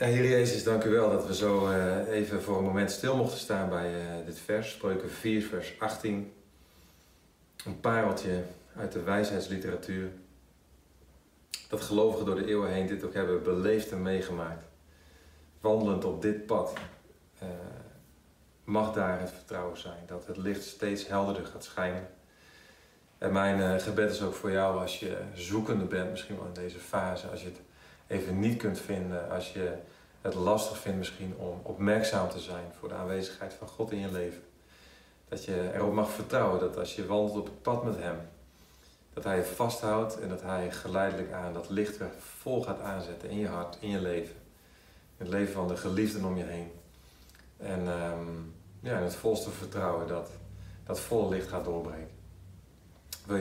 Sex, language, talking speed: male, Dutch, 170 wpm